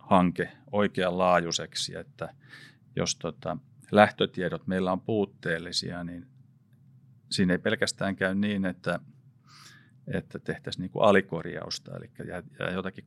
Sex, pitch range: male, 95-135 Hz